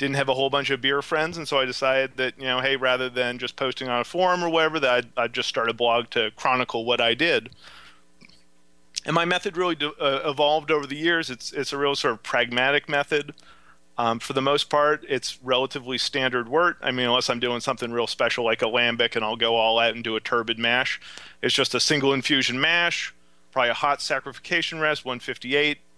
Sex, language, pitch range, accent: male, English, 120-155 Hz, American